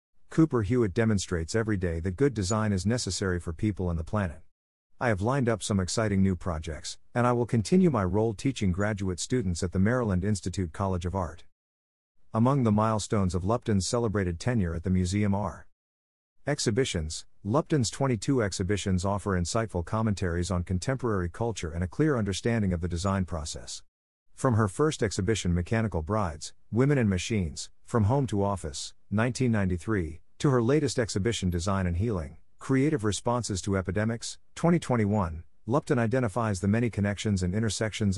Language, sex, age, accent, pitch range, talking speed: English, male, 50-69, American, 90-120 Hz, 160 wpm